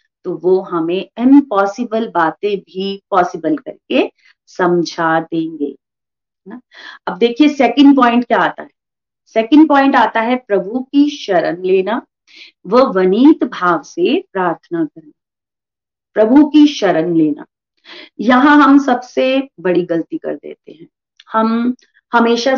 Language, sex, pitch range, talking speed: Hindi, female, 190-290 Hz, 120 wpm